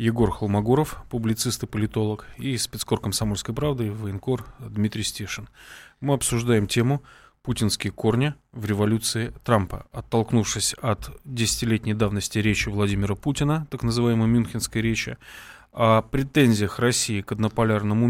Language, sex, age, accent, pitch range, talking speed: Russian, male, 20-39, native, 105-125 Hz, 120 wpm